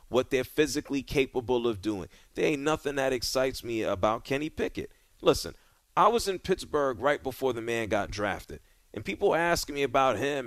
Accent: American